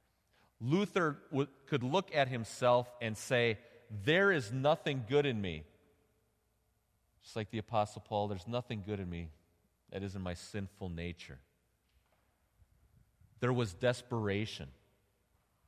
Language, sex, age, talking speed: English, male, 30-49, 125 wpm